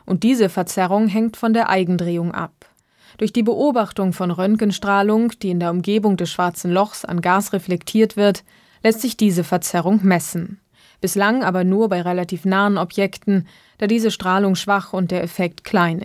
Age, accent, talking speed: 20-39, German, 165 wpm